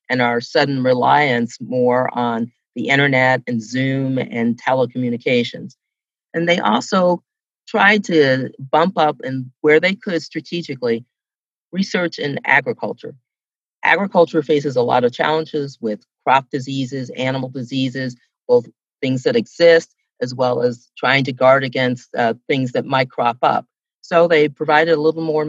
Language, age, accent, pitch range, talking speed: English, 40-59, American, 125-160 Hz, 145 wpm